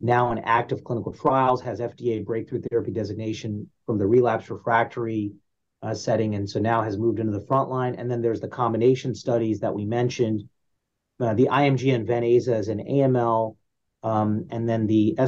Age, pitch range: 30-49, 110-130 Hz